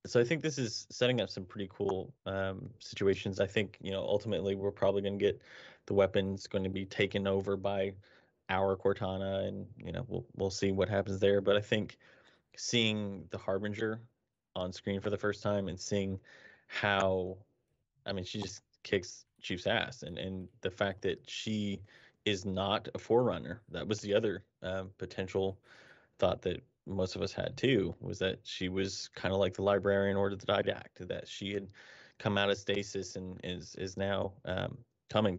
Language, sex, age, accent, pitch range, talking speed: English, male, 20-39, American, 95-105 Hz, 190 wpm